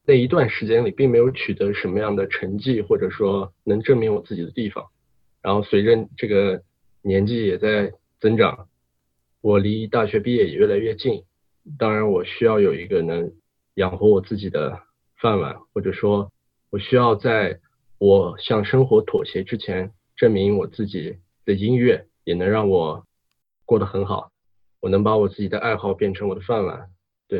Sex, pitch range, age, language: male, 95-130 Hz, 20-39, English